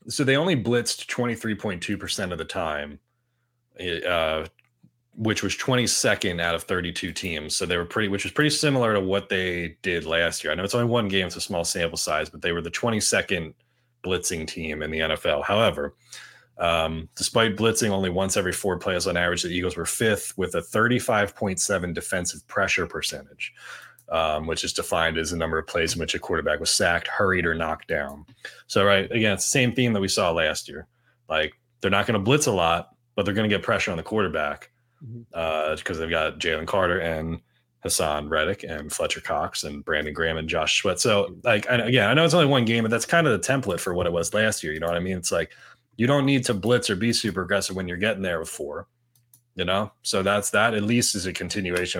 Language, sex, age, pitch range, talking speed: English, male, 30-49, 85-120 Hz, 220 wpm